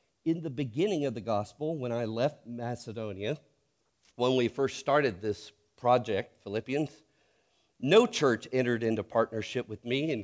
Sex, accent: male, American